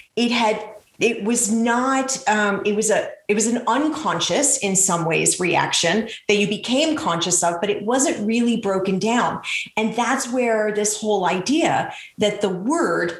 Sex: female